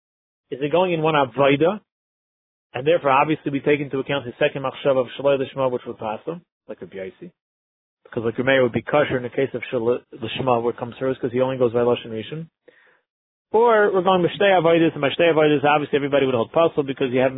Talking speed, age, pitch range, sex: 220 wpm, 30-49, 130-165 Hz, male